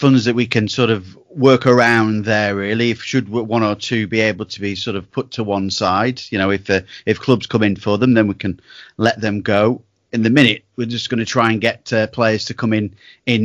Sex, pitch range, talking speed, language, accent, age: male, 110-125 Hz, 255 wpm, English, British, 30-49